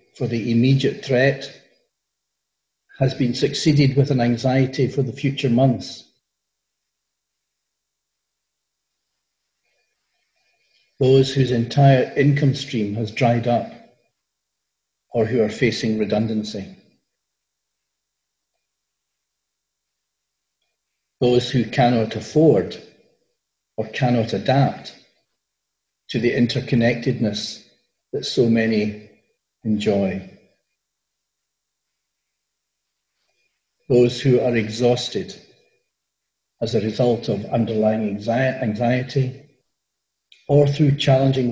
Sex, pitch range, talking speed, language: male, 115-135 Hz, 80 wpm, English